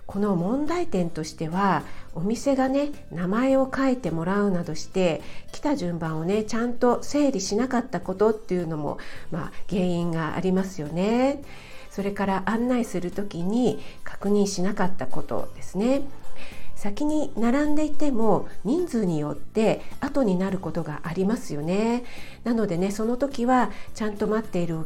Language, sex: Japanese, female